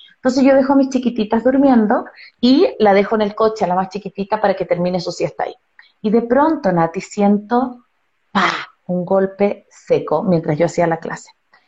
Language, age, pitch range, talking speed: Spanish, 30-49, 195-250 Hz, 190 wpm